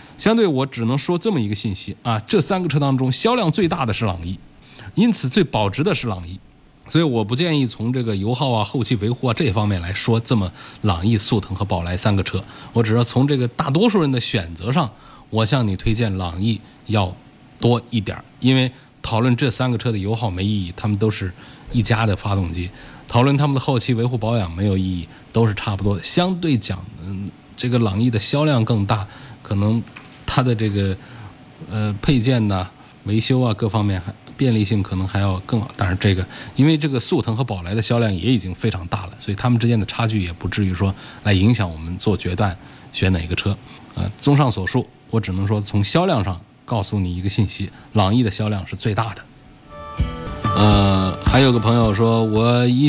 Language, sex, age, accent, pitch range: Chinese, male, 20-39, native, 100-130 Hz